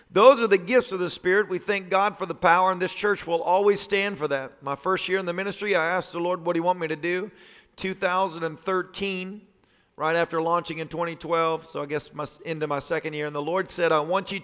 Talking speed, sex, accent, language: 240 wpm, male, American, English